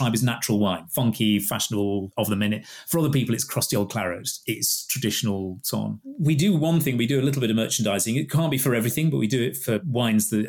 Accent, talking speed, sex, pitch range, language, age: British, 240 wpm, male, 105-140 Hz, English, 30-49